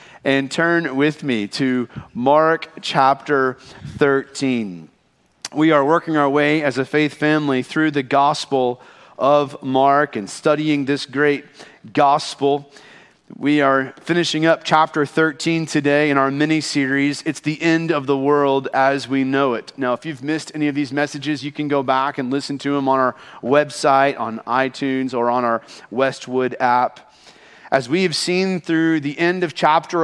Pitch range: 140-160 Hz